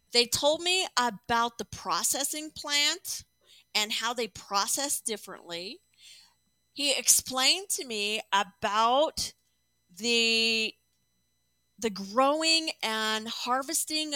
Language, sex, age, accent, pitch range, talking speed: English, female, 40-59, American, 210-275 Hz, 95 wpm